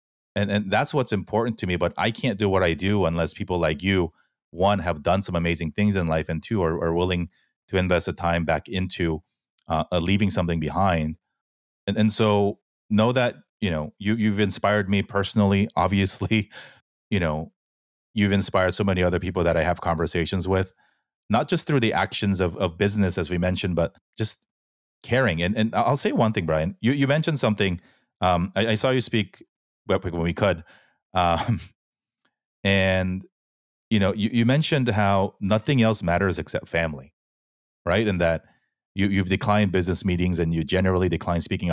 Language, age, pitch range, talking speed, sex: English, 30-49, 85-105 Hz, 185 wpm, male